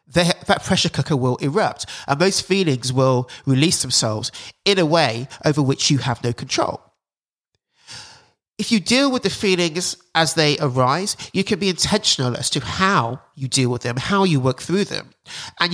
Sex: male